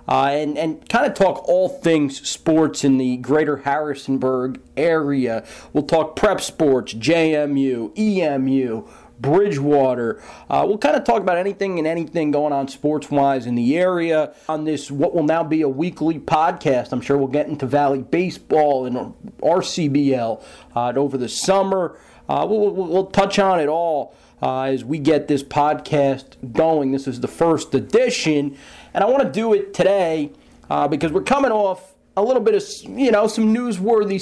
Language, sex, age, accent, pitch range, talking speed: English, male, 40-59, American, 135-170 Hz, 170 wpm